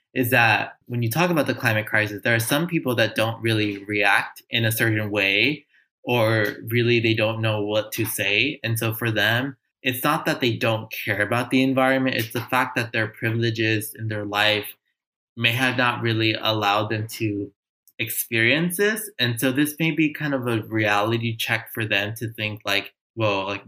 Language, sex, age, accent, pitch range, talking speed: English, male, 20-39, American, 105-120 Hz, 195 wpm